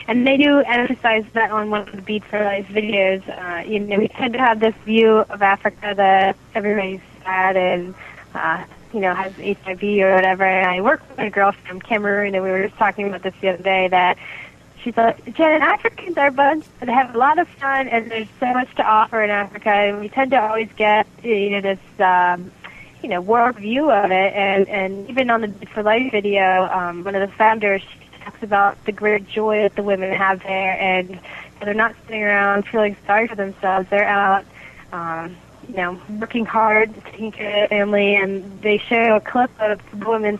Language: English